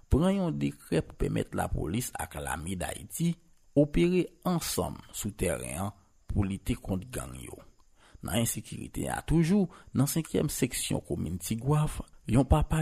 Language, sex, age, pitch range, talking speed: French, male, 50-69, 90-145 Hz, 140 wpm